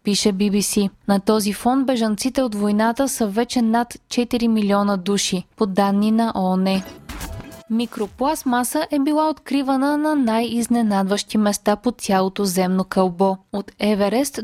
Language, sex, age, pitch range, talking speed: Bulgarian, female, 20-39, 205-260 Hz, 130 wpm